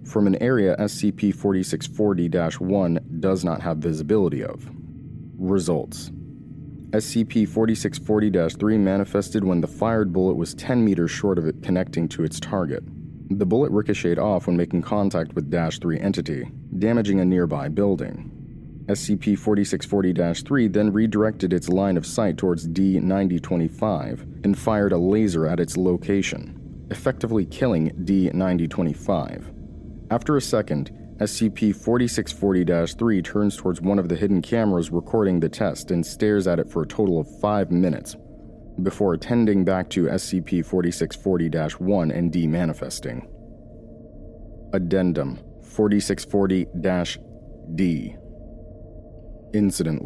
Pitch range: 85-105 Hz